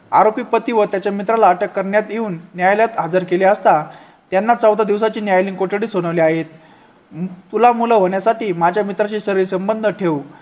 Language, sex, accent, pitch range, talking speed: Marathi, male, native, 175-220 Hz, 150 wpm